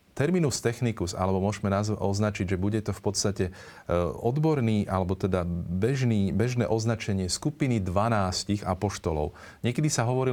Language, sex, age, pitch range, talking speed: Slovak, male, 40-59, 90-115 Hz, 130 wpm